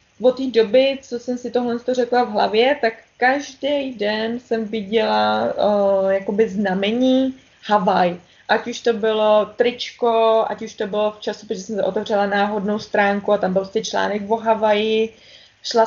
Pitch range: 210-240 Hz